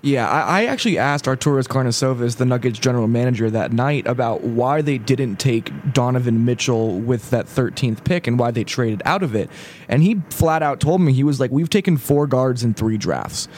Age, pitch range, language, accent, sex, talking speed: 20-39, 125-160 Hz, English, American, male, 205 wpm